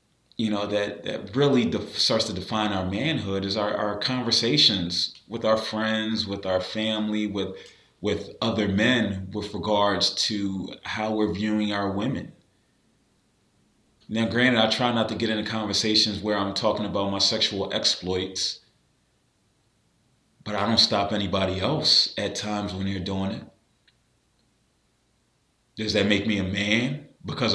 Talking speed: 150 wpm